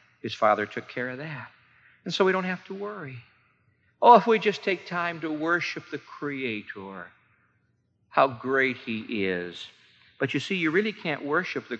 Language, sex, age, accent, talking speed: English, male, 50-69, American, 180 wpm